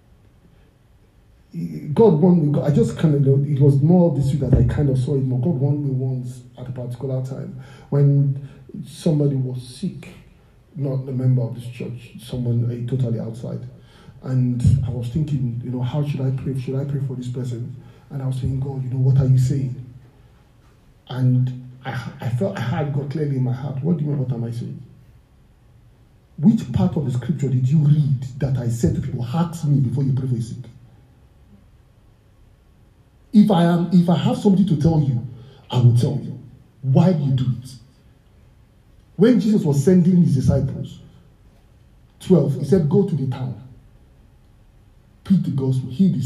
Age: 50-69